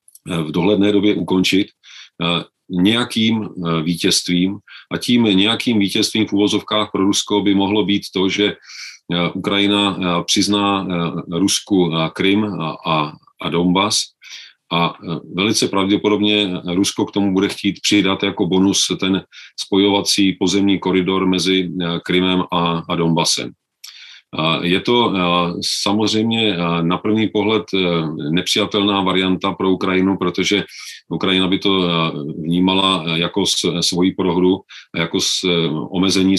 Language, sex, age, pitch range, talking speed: Czech, male, 40-59, 90-100 Hz, 110 wpm